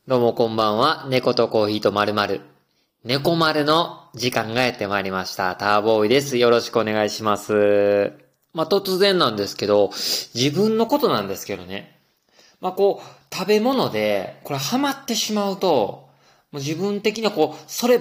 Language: Japanese